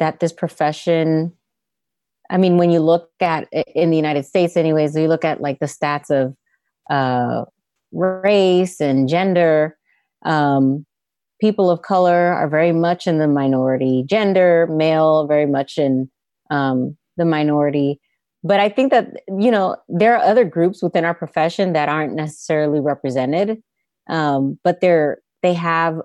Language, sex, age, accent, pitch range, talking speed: English, female, 30-49, American, 150-190 Hz, 145 wpm